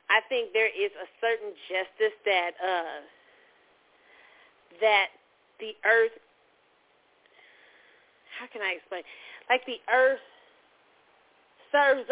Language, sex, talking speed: English, female, 100 wpm